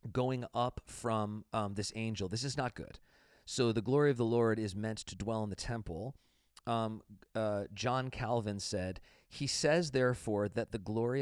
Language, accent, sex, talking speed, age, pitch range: English, American, male, 180 wpm, 30-49, 100-120 Hz